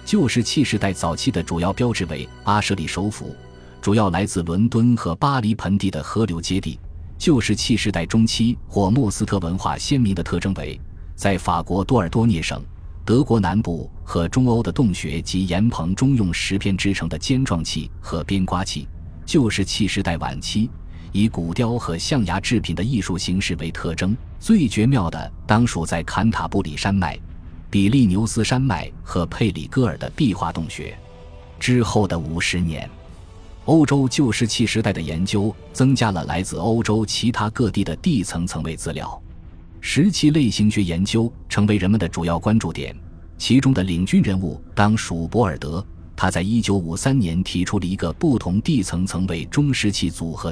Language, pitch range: Chinese, 85-110 Hz